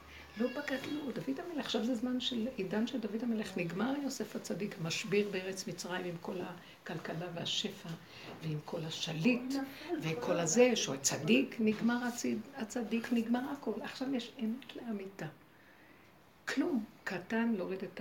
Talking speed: 145 wpm